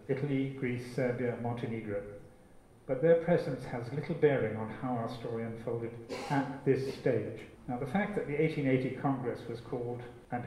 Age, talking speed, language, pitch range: 50-69, 160 wpm, English, 115-140 Hz